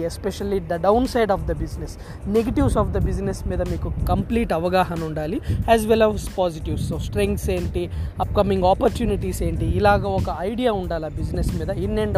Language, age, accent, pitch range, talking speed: Telugu, 20-39, native, 170-220 Hz, 170 wpm